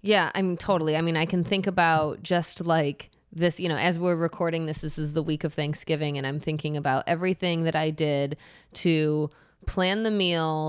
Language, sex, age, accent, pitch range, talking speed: English, female, 20-39, American, 155-180 Hz, 210 wpm